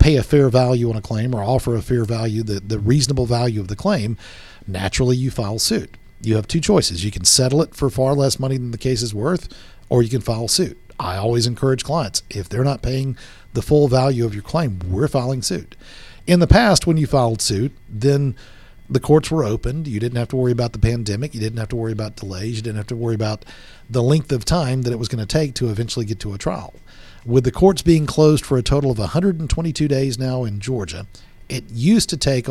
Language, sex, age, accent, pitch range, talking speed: English, male, 50-69, American, 110-140 Hz, 240 wpm